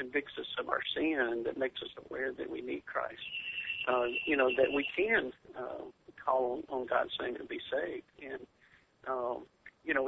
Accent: American